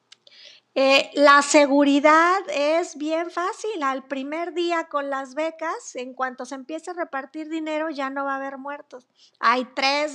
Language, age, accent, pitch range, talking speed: Spanish, 50-69, American, 255-330 Hz, 160 wpm